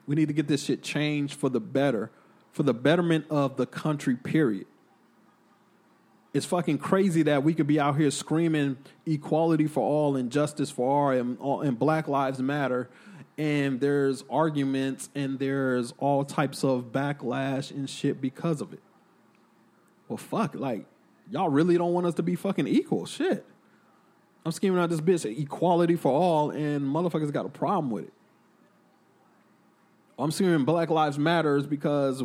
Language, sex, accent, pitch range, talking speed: English, male, American, 140-160 Hz, 160 wpm